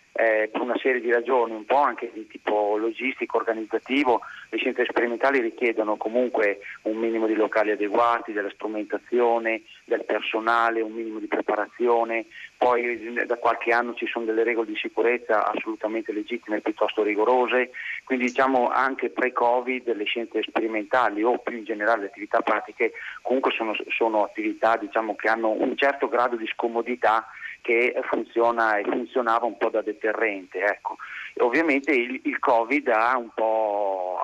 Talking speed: 155 wpm